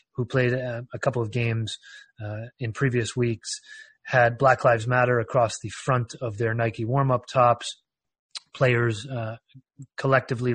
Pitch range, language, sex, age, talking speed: 110-130 Hz, English, male, 30-49, 150 wpm